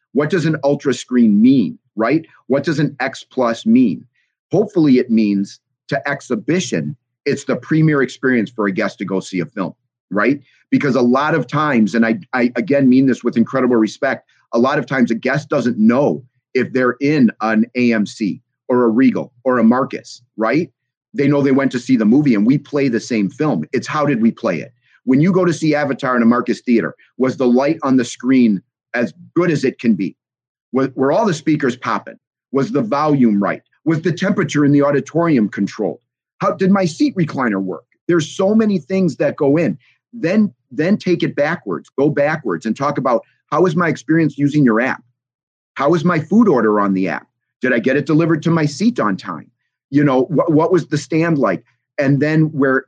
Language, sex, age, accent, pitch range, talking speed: English, male, 30-49, American, 125-165 Hz, 205 wpm